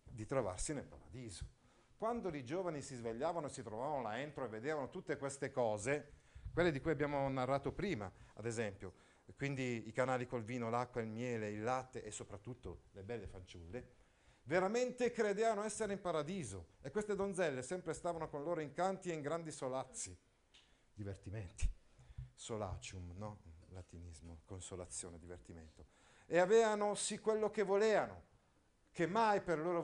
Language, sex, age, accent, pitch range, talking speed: Italian, male, 50-69, native, 105-160 Hz, 155 wpm